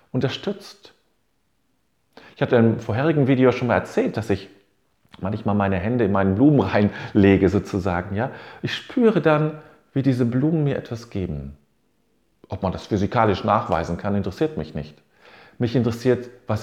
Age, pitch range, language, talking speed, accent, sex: 40-59, 100-145 Hz, German, 150 wpm, German, male